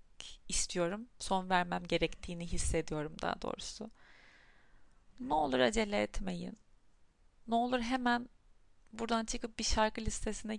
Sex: female